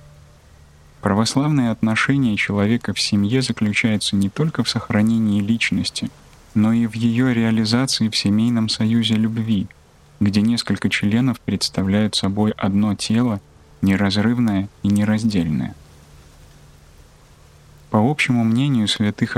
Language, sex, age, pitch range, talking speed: Russian, male, 20-39, 90-115 Hz, 105 wpm